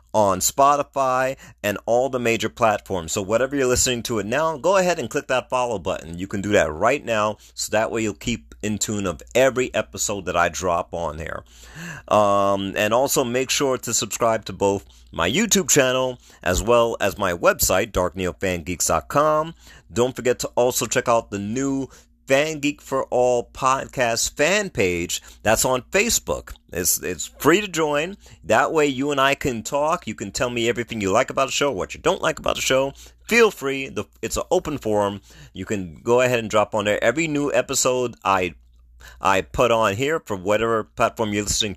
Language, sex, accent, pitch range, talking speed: English, male, American, 100-135 Hz, 195 wpm